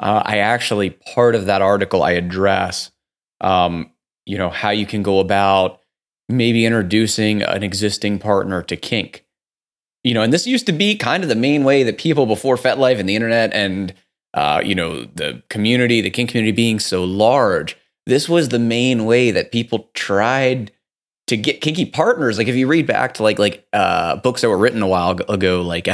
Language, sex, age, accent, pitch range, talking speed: English, male, 30-49, American, 95-120 Hz, 195 wpm